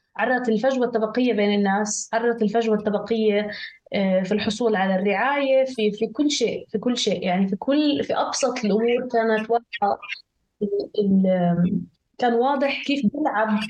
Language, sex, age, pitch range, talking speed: Arabic, female, 20-39, 200-240 Hz, 135 wpm